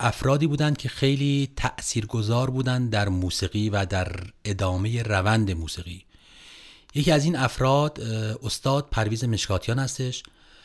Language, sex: Persian, male